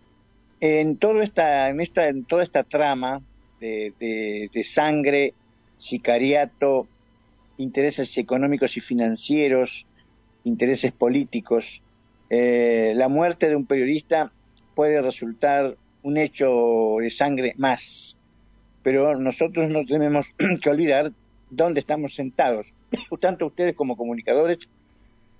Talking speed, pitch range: 110 wpm, 110-145 Hz